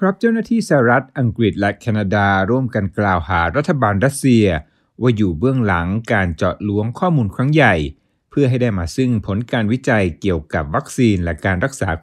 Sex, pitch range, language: male, 95-125 Hz, Thai